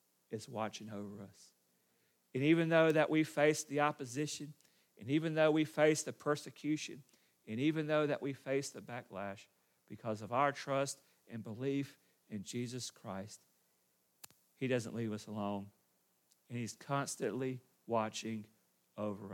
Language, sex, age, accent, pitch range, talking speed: English, male, 40-59, American, 110-140 Hz, 145 wpm